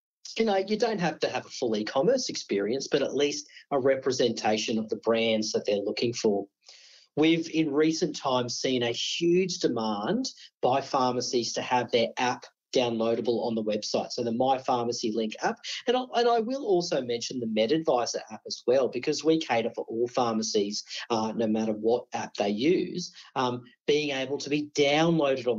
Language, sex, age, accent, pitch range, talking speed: English, male, 40-59, Australian, 120-175 Hz, 185 wpm